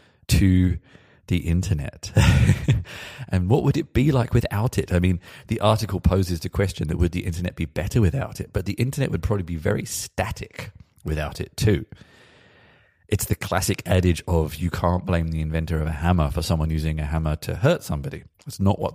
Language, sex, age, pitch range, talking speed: English, male, 30-49, 85-110 Hz, 195 wpm